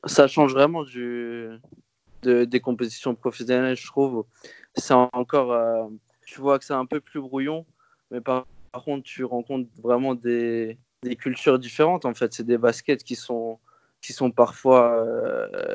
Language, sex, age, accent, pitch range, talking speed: French, male, 20-39, French, 120-130 Hz, 165 wpm